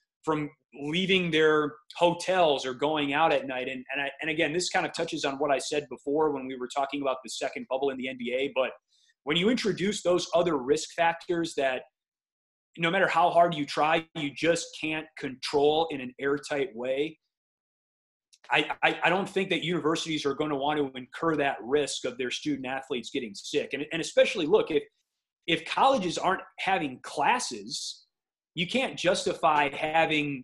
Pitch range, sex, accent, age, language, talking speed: 140-170 Hz, male, American, 30-49, English, 180 wpm